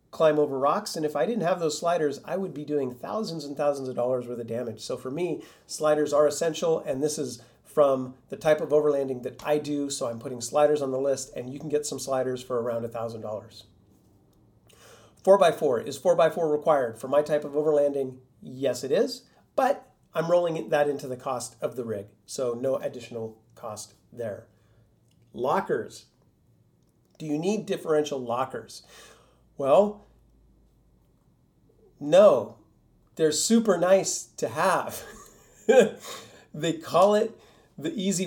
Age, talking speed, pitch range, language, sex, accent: 40-59, 165 wpm, 125-155 Hz, English, male, American